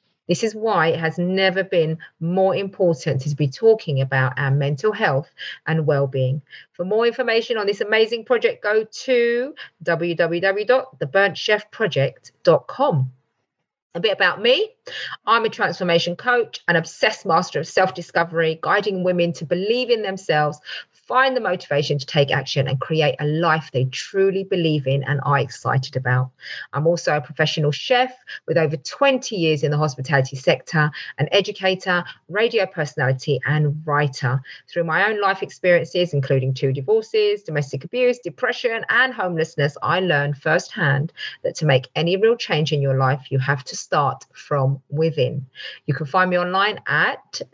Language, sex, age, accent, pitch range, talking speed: English, female, 40-59, British, 145-205 Hz, 155 wpm